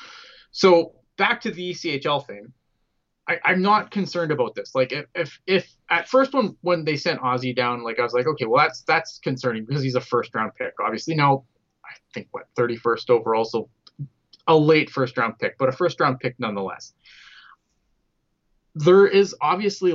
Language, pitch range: English, 120-165 Hz